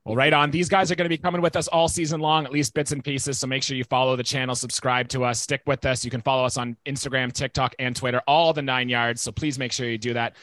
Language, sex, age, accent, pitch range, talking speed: English, male, 30-49, American, 135-180 Hz, 305 wpm